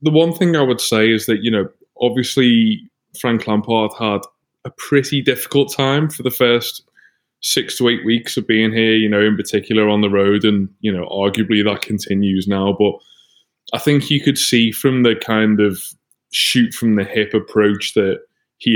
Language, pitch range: English, 105-125 Hz